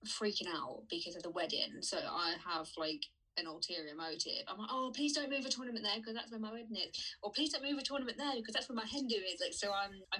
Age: 20-39